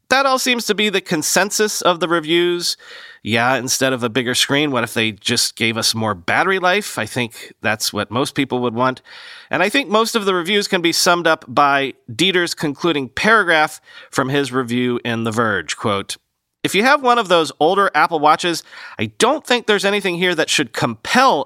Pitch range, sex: 130-195 Hz, male